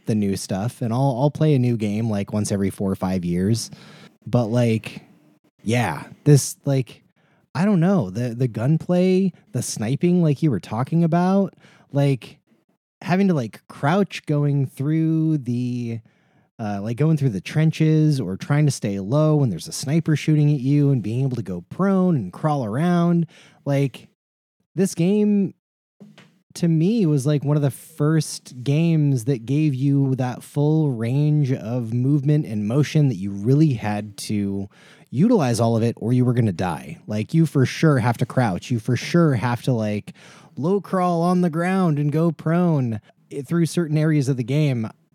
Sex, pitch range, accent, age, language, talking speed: male, 120-165 Hz, American, 20-39, English, 180 wpm